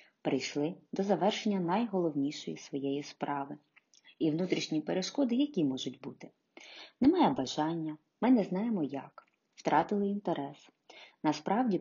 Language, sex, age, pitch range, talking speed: Ukrainian, female, 30-49, 150-215 Hz, 105 wpm